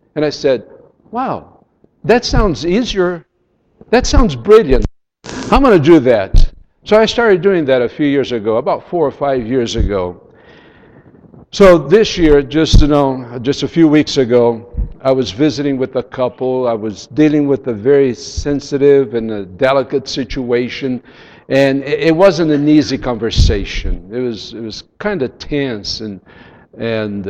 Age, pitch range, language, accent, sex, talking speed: 60-79, 110-150 Hz, English, American, male, 160 wpm